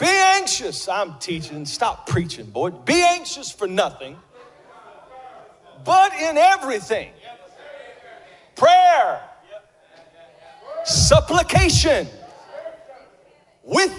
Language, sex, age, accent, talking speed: English, male, 40-59, American, 75 wpm